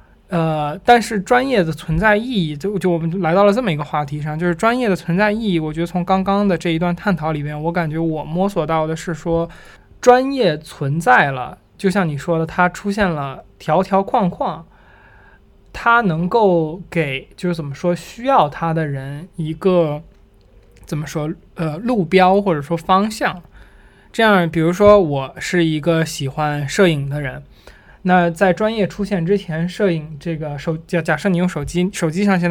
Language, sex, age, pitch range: Chinese, male, 20-39, 145-190 Hz